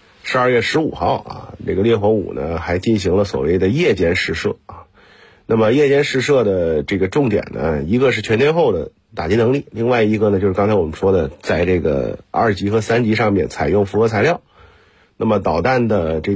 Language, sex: Chinese, male